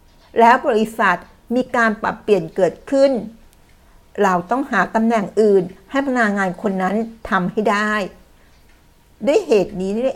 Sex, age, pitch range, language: female, 60-79, 185-230 Hz, Thai